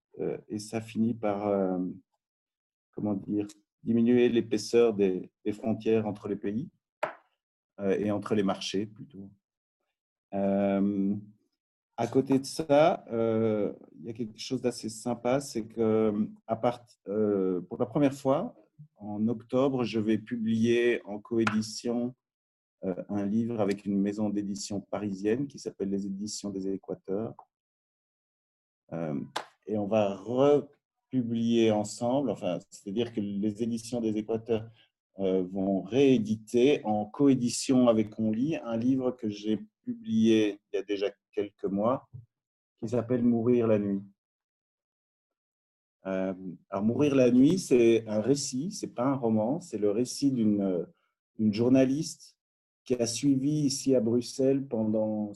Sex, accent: male, French